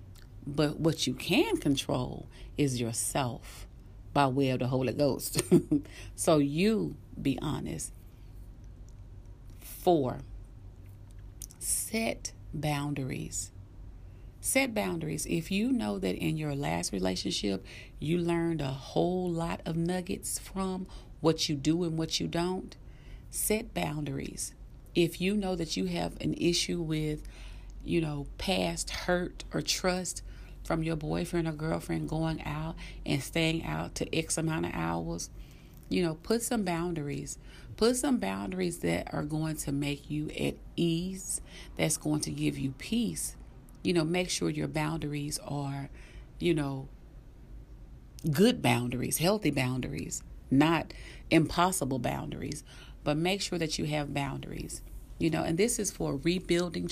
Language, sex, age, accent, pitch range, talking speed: English, female, 40-59, American, 115-170 Hz, 135 wpm